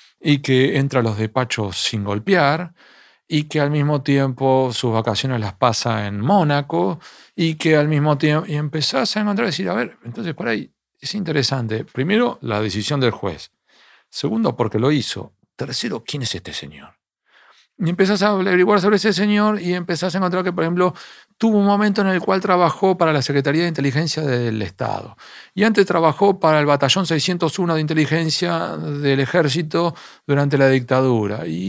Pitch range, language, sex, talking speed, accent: 130-190 Hz, Spanish, male, 175 wpm, Argentinian